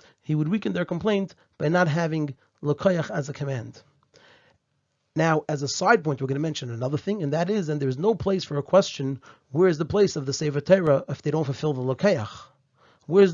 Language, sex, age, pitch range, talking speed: English, male, 30-49, 140-180 Hz, 205 wpm